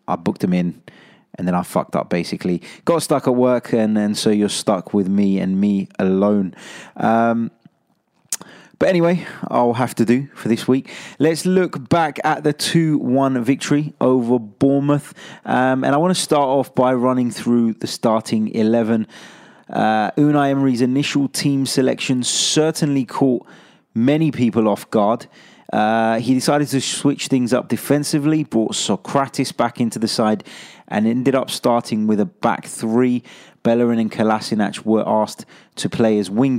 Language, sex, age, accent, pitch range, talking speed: English, male, 20-39, British, 110-145 Hz, 160 wpm